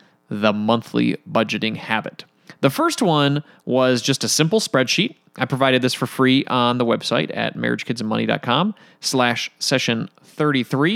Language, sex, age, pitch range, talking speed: English, male, 30-49, 125-170 Hz, 135 wpm